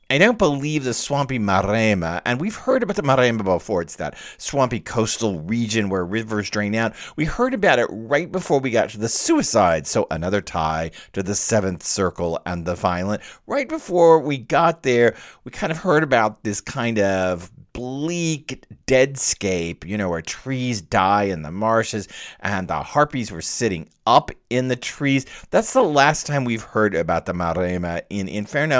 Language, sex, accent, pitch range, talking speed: English, male, American, 95-130 Hz, 180 wpm